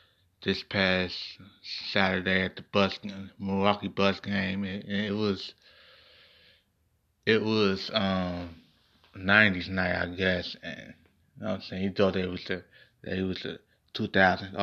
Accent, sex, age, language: American, male, 20-39, English